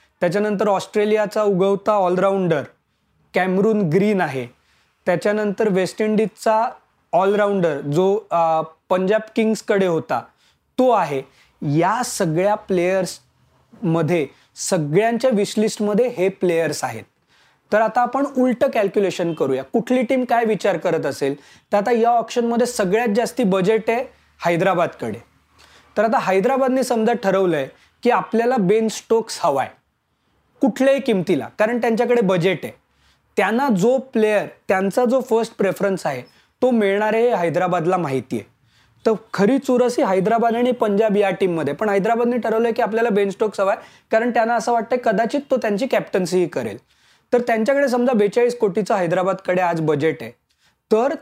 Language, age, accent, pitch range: Marathi, 20-39, native, 185-235 Hz